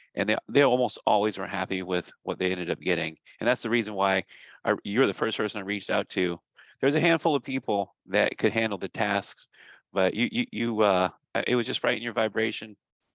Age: 30-49